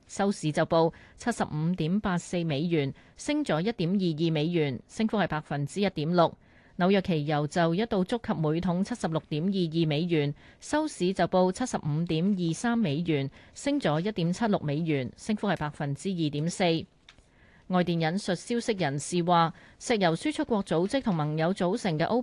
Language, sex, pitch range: Chinese, female, 160-210 Hz